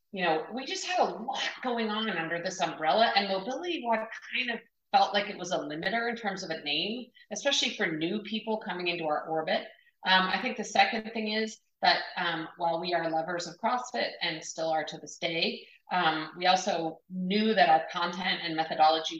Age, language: 30-49, English